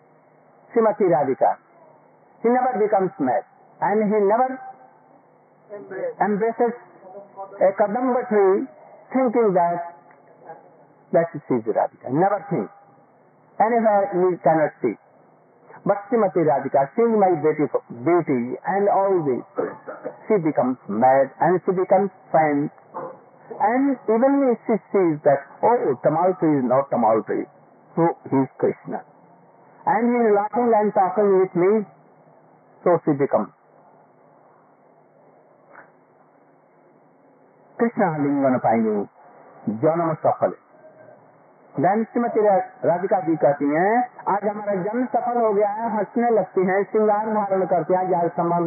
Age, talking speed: 60-79, 105 wpm